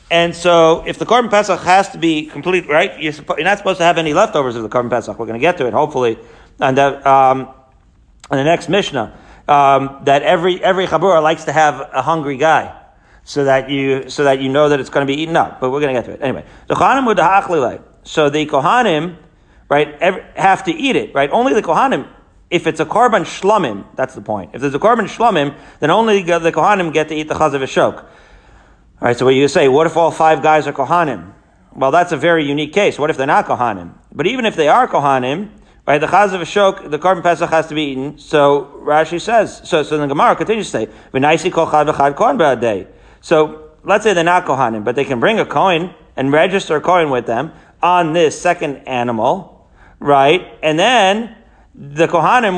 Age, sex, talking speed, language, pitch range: 40-59, male, 215 wpm, English, 140-180 Hz